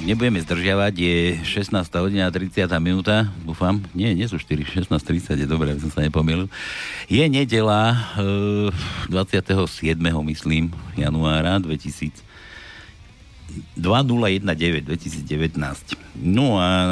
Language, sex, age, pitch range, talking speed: Slovak, male, 60-79, 80-100 Hz, 95 wpm